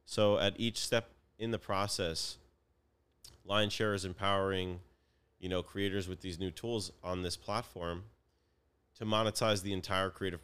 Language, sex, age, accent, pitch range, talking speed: English, male, 30-49, American, 85-105 Hz, 145 wpm